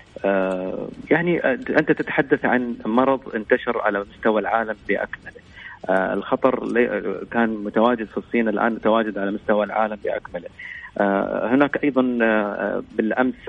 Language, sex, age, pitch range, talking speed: Arabic, male, 30-49, 100-130 Hz, 105 wpm